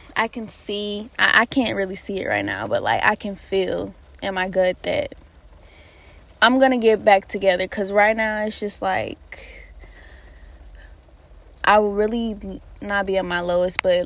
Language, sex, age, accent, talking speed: English, female, 20-39, American, 170 wpm